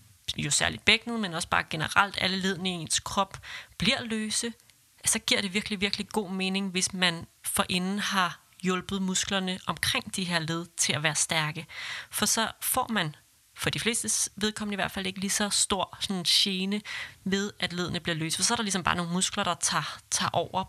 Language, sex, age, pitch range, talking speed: Danish, female, 30-49, 160-205 Hz, 200 wpm